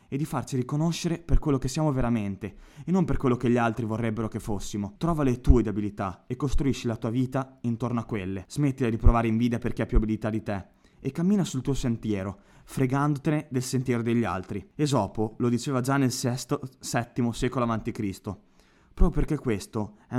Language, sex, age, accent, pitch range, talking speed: Italian, male, 20-39, native, 105-135 Hz, 190 wpm